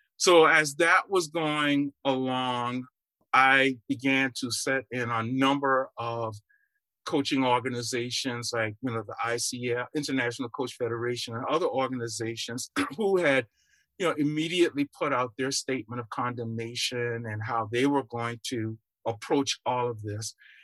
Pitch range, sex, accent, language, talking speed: 120-155 Hz, male, American, English, 140 wpm